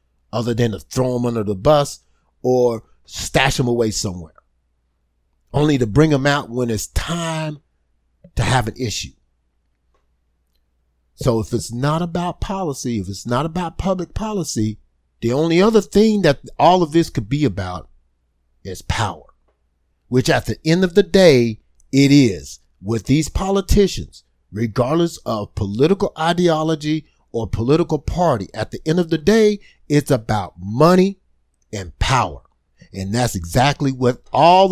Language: English